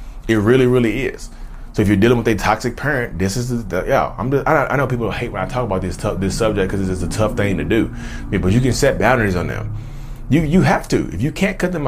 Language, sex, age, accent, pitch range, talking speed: English, male, 30-49, American, 95-120 Hz, 280 wpm